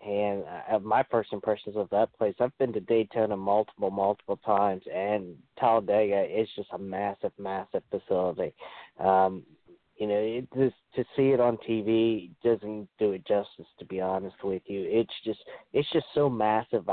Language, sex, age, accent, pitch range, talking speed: English, male, 20-39, American, 100-120 Hz, 155 wpm